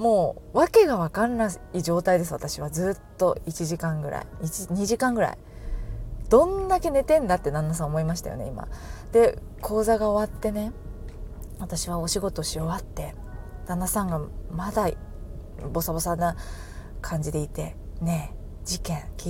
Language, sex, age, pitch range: Japanese, female, 20-39, 160-245 Hz